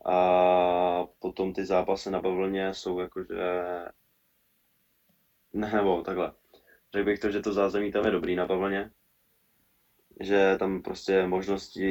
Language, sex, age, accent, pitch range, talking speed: Czech, male, 20-39, native, 90-100 Hz, 130 wpm